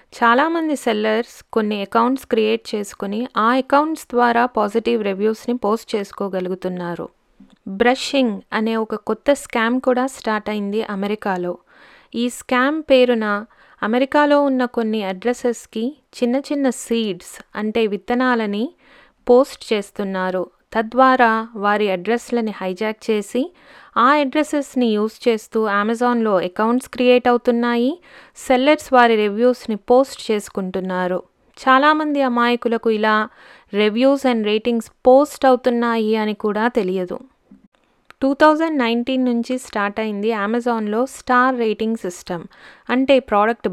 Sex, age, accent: female, 20-39, native